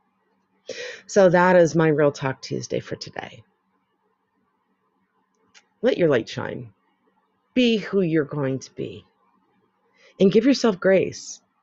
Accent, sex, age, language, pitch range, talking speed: American, female, 40-59, English, 155-200 Hz, 120 wpm